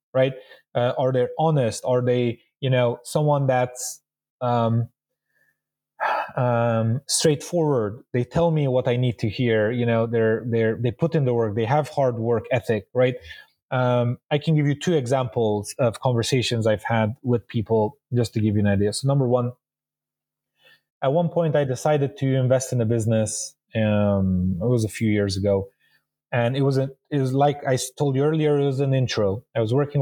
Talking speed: 190 wpm